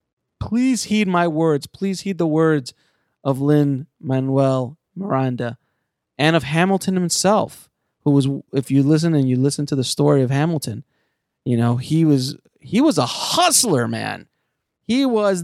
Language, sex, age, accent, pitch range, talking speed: English, male, 30-49, American, 130-175 Hz, 155 wpm